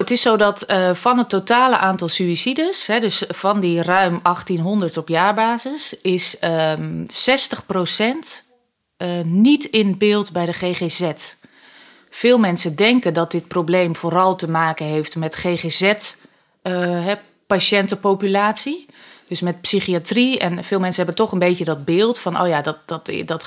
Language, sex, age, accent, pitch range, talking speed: Dutch, female, 20-39, Dutch, 170-200 Hz, 140 wpm